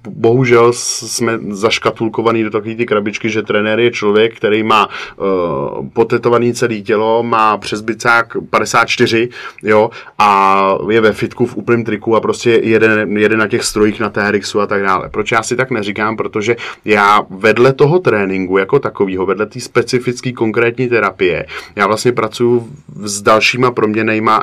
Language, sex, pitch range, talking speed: Czech, male, 105-120 Hz, 160 wpm